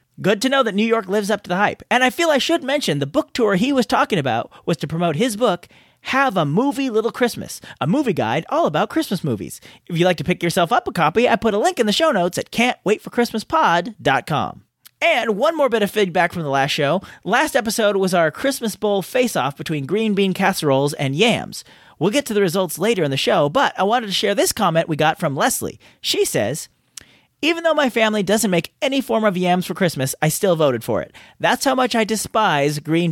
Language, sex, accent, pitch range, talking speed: English, male, American, 165-240 Hz, 230 wpm